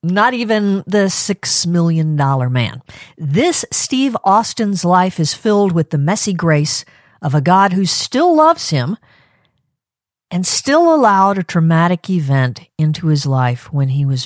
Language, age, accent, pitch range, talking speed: English, 50-69, American, 150-200 Hz, 145 wpm